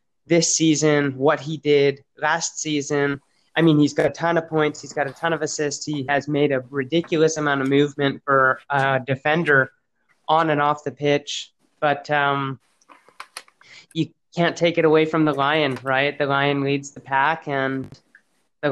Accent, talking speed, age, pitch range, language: American, 175 wpm, 20-39, 140-150 Hz, English